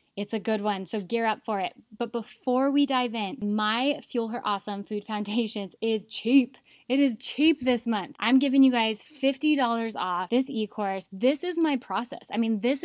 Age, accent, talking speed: 10-29, American, 195 wpm